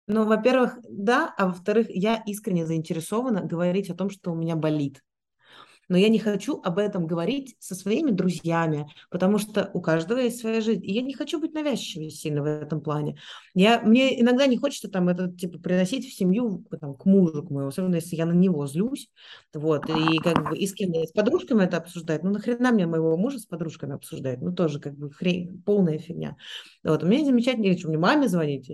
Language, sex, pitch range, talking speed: Russian, female, 165-220 Hz, 200 wpm